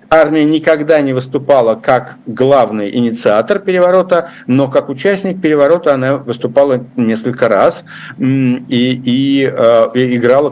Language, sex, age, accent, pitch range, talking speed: Russian, male, 60-79, native, 120-155 Hz, 115 wpm